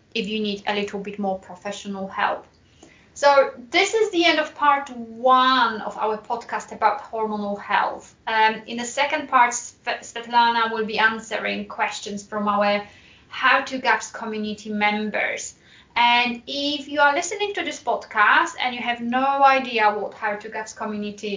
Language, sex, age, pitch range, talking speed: English, female, 20-39, 215-275 Hz, 165 wpm